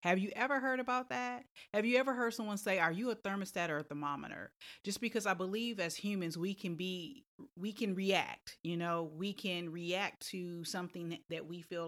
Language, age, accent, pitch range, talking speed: English, 30-49, American, 160-195 Hz, 205 wpm